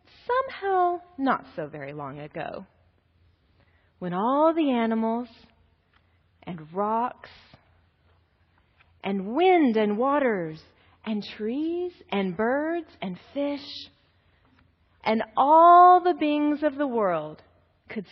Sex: female